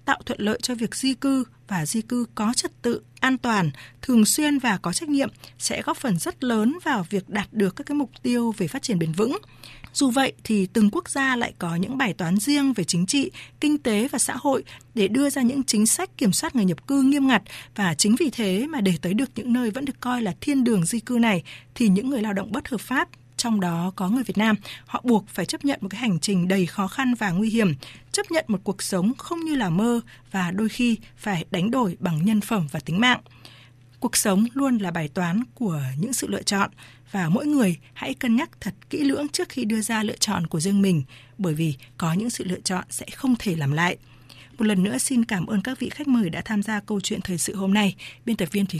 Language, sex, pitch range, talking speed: Vietnamese, female, 185-250 Hz, 250 wpm